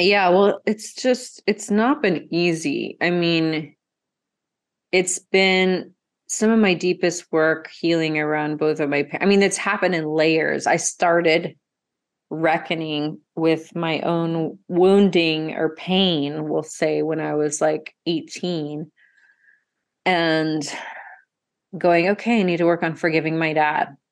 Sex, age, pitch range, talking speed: female, 30-49, 155-180 Hz, 135 wpm